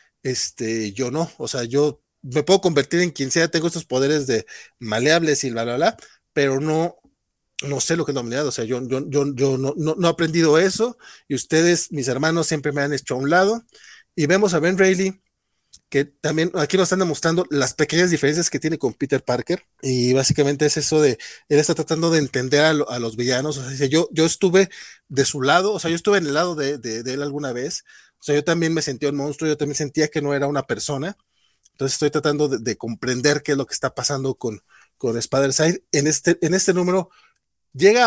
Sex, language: male, Spanish